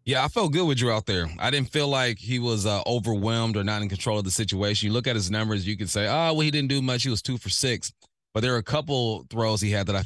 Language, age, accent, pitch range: English, 30-49, American, 100-120 Hz